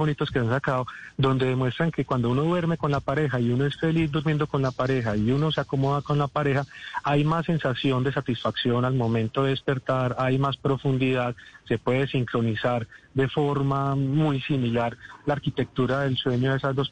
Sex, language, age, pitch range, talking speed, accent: male, Spanish, 30-49, 125-155 Hz, 190 wpm, Colombian